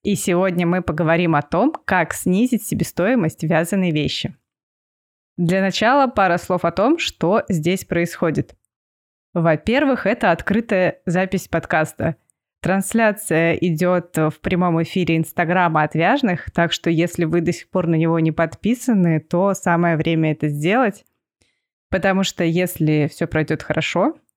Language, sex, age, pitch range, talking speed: Russian, female, 20-39, 165-200 Hz, 135 wpm